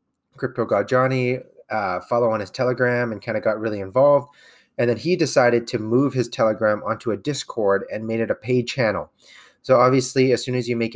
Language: English